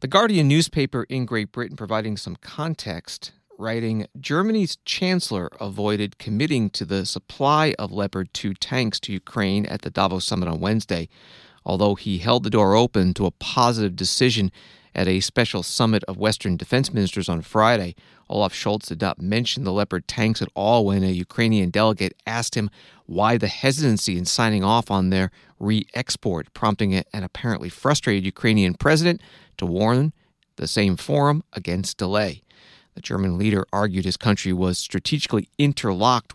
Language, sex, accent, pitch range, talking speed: English, male, American, 95-120 Hz, 160 wpm